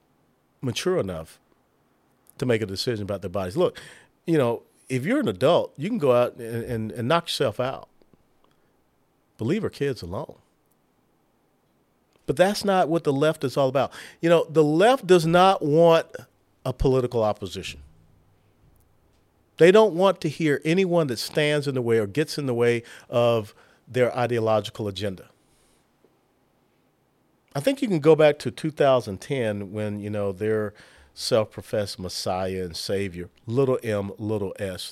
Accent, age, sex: American, 40-59, male